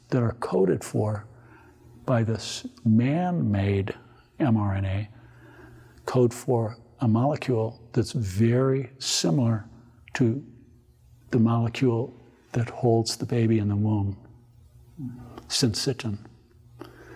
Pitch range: 115-130 Hz